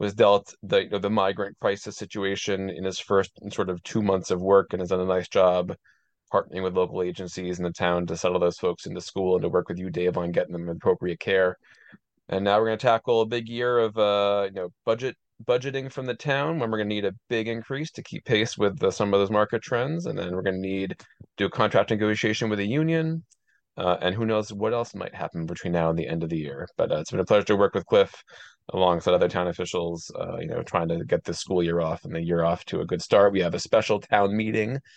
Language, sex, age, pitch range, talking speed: English, male, 30-49, 90-110 Hz, 260 wpm